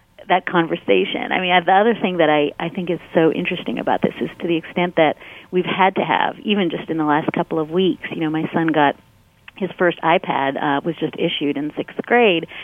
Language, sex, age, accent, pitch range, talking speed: English, female, 40-59, American, 165-210 Hz, 230 wpm